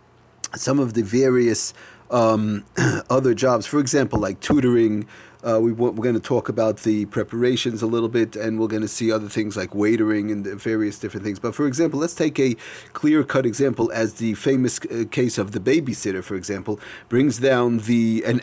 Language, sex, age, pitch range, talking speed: English, male, 40-59, 115-150 Hz, 195 wpm